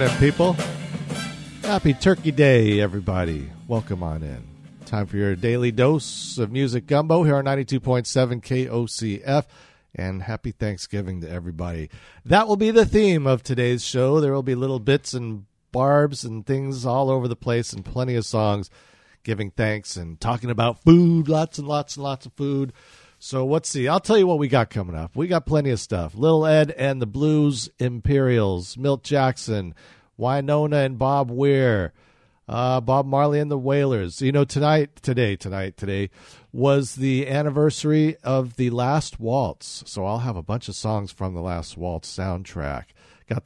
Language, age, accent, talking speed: English, 50-69, American, 170 wpm